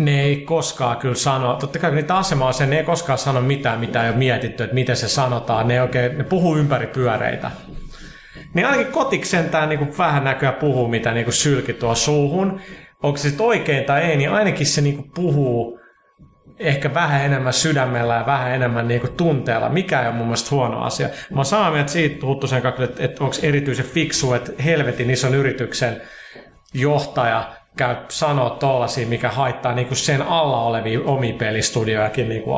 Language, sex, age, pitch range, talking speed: Finnish, male, 30-49, 120-145 Hz, 180 wpm